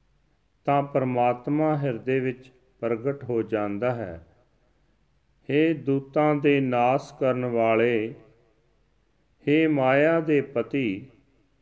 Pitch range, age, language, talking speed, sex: 120-145 Hz, 40-59, Punjabi, 70 wpm, male